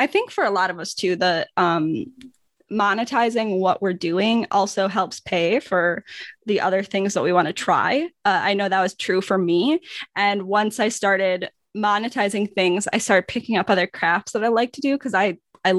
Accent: American